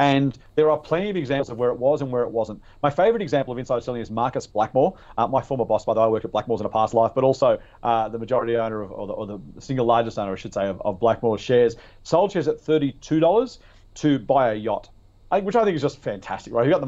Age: 40-59